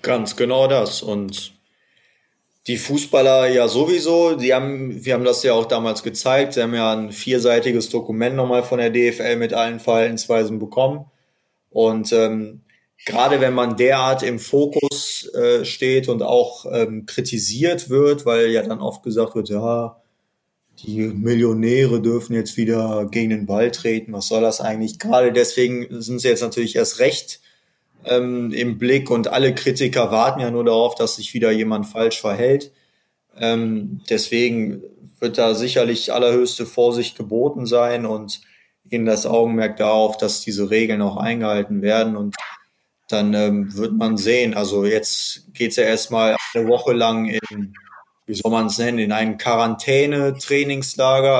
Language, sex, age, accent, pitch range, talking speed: German, male, 20-39, German, 110-125 Hz, 150 wpm